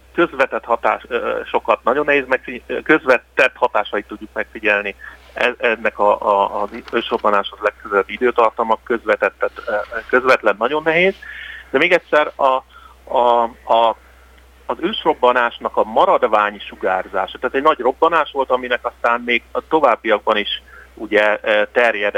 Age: 40-59